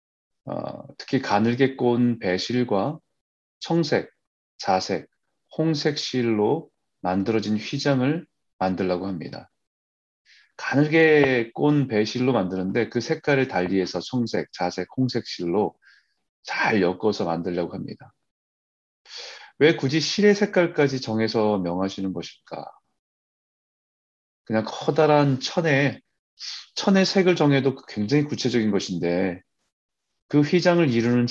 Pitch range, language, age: 95-140 Hz, Korean, 30-49